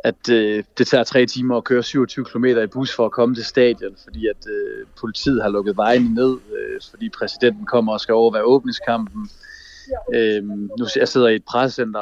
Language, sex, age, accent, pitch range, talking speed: Danish, male, 30-49, native, 115-140 Hz, 205 wpm